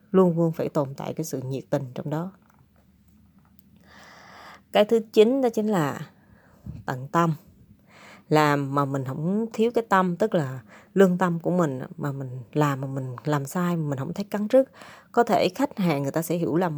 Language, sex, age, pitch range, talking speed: Vietnamese, female, 20-39, 155-210 Hz, 195 wpm